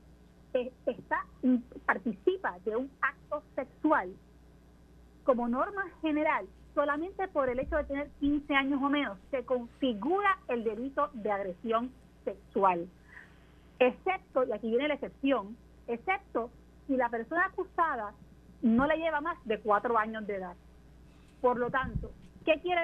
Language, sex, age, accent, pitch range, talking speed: Spanish, female, 40-59, American, 225-305 Hz, 135 wpm